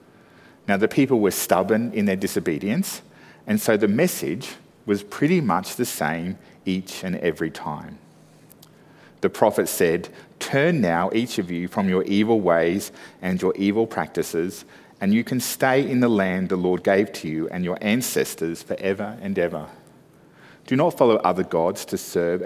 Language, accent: English, Australian